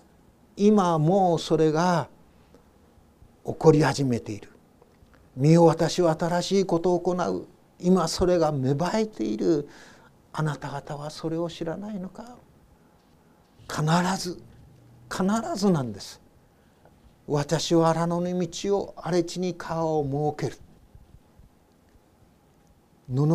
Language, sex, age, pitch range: Japanese, male, 50-69, 150-175 Hz